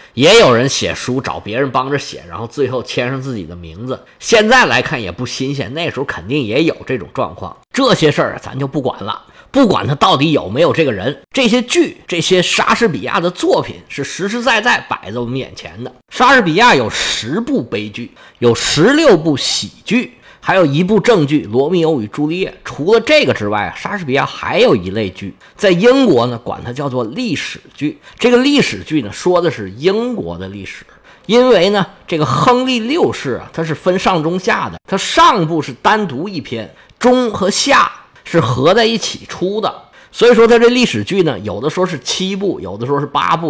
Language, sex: Chinese, male